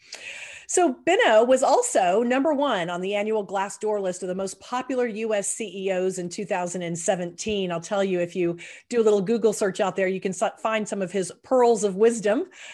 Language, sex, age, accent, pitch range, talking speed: English, female, 40-59, American, 175-220 Hz, 190 wpm